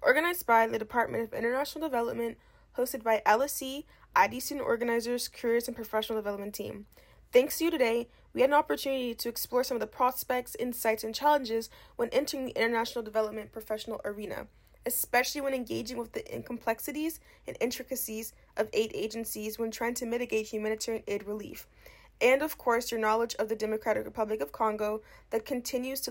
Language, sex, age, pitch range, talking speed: English, female, 20-39, 220-265 Hz, 170 wpm